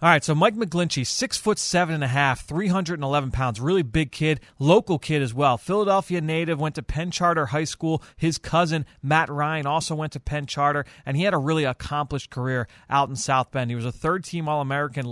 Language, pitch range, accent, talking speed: English, 130-155 Hz, American, 195 wpm